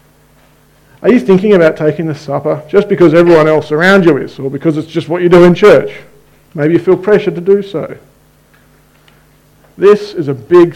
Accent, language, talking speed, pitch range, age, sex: Australian, English, 190 wpm, 140-185 Hz, 40-59, male